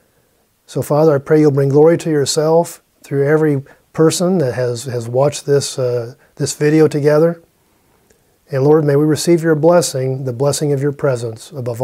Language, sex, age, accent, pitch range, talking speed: English, male, 40-59, American, 130-160 Hz, 165 wpm